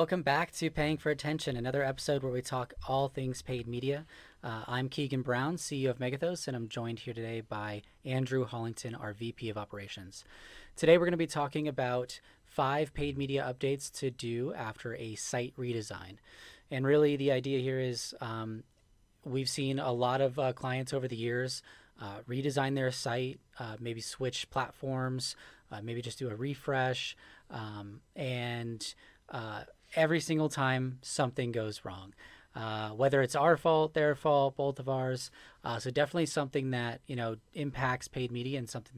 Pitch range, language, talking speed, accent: 110-140 Hz, English, 175 wpm, American